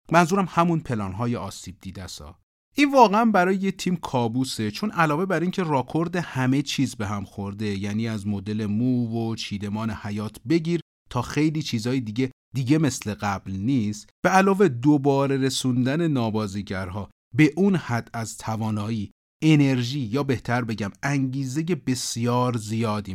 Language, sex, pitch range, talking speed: Persian, male, 100-155 Hz, 140 wpm